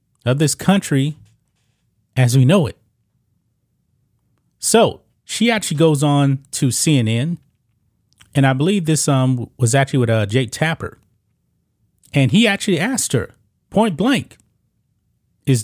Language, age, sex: English, 30-49, male